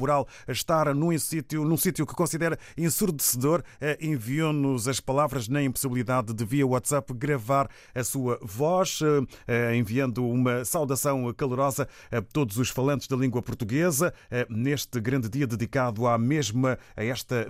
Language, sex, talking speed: Portuguese, male, 125 wpm